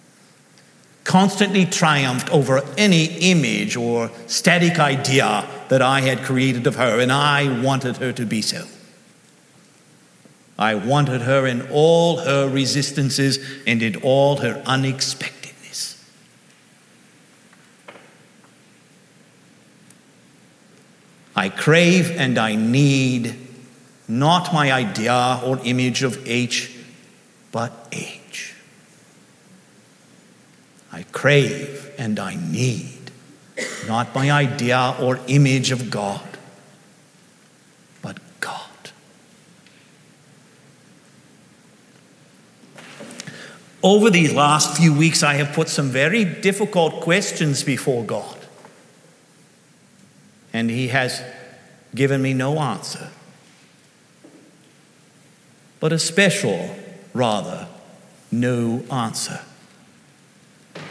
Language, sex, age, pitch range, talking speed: English, male, 50-69, 125-155 Hz, 85 wpm